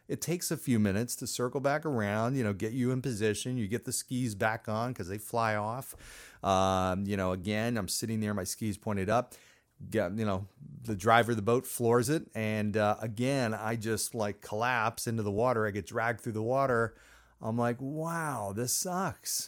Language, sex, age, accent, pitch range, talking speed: English, male, 30-49, American, 105-140 Hz, 205 wpm